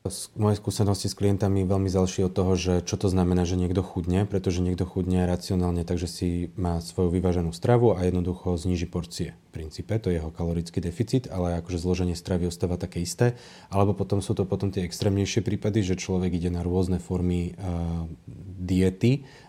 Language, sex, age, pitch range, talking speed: Slovak, male, 30-49, 85-95 Hz, 185 wpm